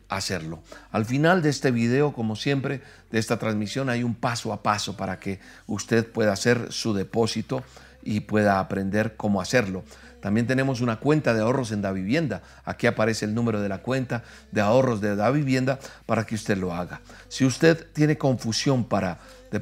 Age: 50-69